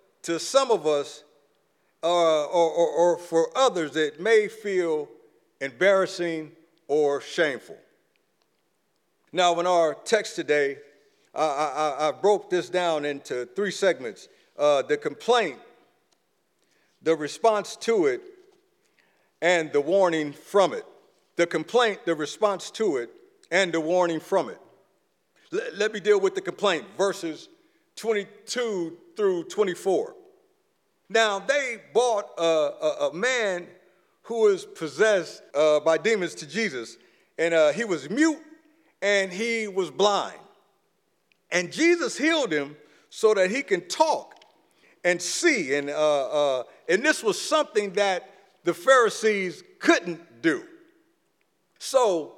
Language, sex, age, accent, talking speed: English, male, 50-69, American, 125 wpm